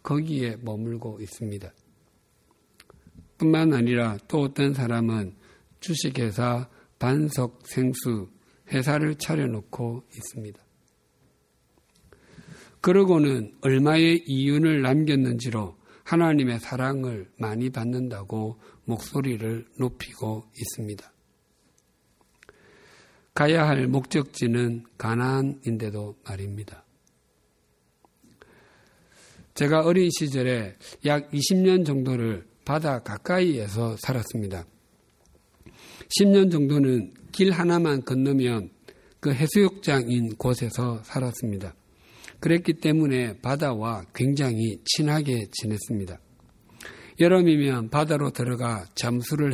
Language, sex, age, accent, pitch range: Korean, male, 60-79, native, 110-145 Hz